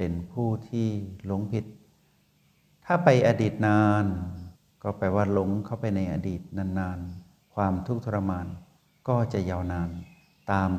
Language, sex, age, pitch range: Thai, male, 60-79, 90-120 Hz